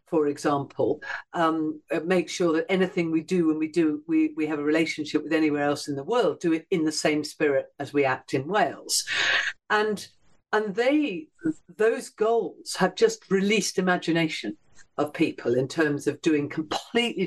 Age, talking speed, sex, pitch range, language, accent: 50-69, 175 wpm, female, 155-215 Hz, English, British